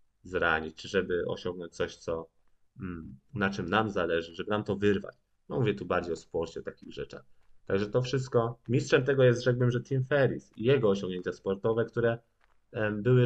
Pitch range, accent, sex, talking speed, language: 100-115 Hz, native, male, 170 wpm, Polish